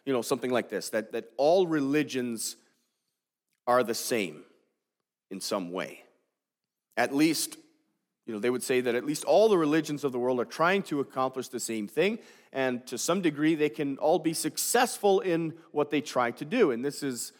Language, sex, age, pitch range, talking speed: English, male, 40-59, 120-175 Hz, 195 wpm